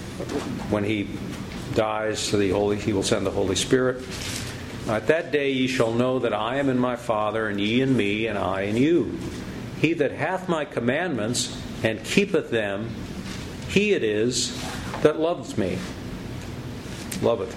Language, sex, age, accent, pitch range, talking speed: English, male, 50-69, American, 110-135 Hz, 150 wpm